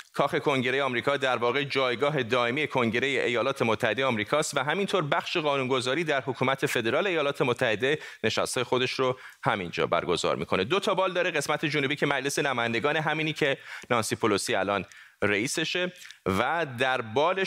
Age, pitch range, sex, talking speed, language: 30-49, 130-155 Hz, male, 155 wpm, Persian